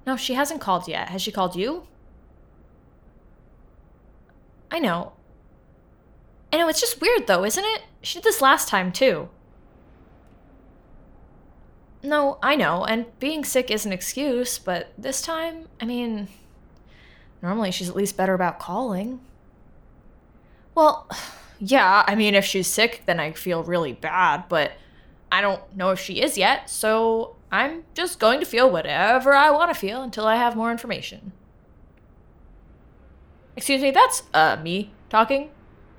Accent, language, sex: American, English, female